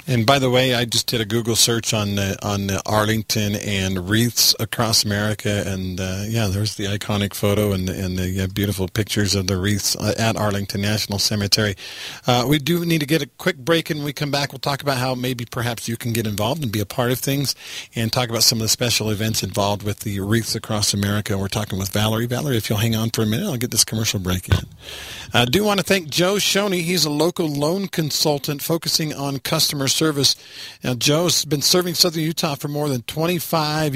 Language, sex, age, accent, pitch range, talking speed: English, male, 50-69, American, 110-145 Hz, 225 wpm